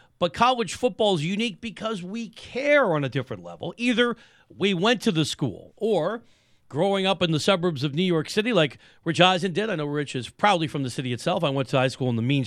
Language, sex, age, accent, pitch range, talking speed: English, male, 40-59, American, 150-200 Hz, 235 wpm